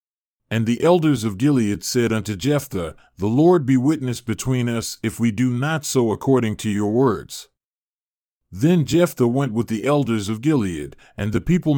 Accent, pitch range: American, 110-145 Hz